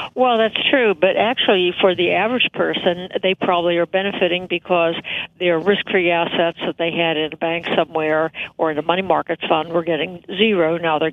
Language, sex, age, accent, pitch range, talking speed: English, female, 60-79, American, 165-185 Hz, 190 wpm